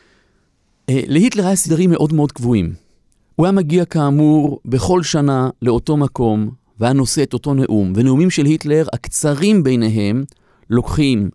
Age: 30-49